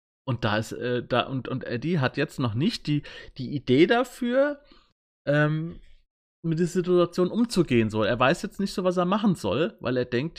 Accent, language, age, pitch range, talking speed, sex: German, German, 30-49, 120-170 Hz, 195 wpm, male